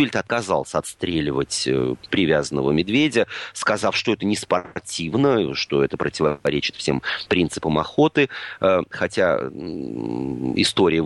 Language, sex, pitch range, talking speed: Russian, male, 90-140 Hz, 90 wpm